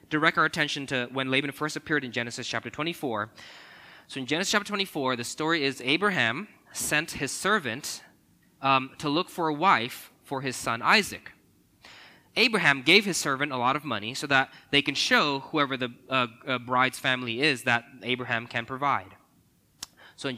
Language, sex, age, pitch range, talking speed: English, male, 20-39, 115-155 Hz, 175 wpm